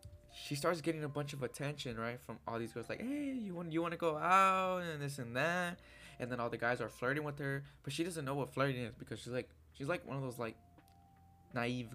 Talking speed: 255 wpm